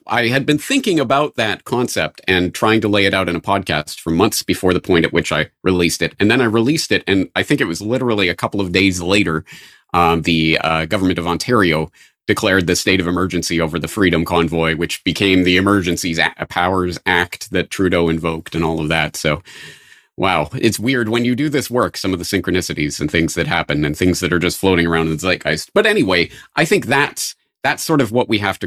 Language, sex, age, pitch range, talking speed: English, male, 30-49, 85-110 Hz, 230 wpm